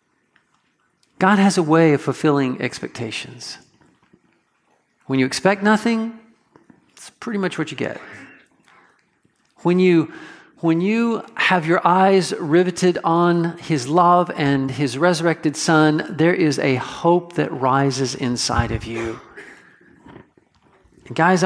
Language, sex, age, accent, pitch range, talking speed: English, male, 50-69, American, 145-195 Hz, 115 wpm